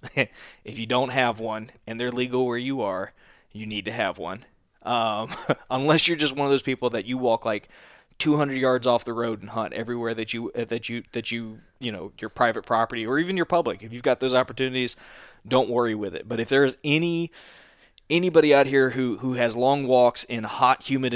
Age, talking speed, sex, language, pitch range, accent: 20-39, 215 wpm, male, English, 115-130 Hz, American